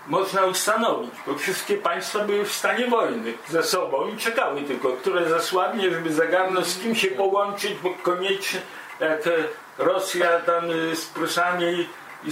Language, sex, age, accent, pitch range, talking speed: Polish, male, 50-69, native, 165-195 Hz, 150 wpm